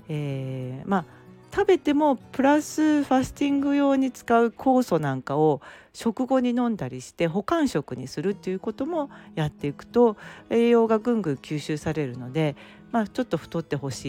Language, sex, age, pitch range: Japanese, female, 40-59, 145-230 Hz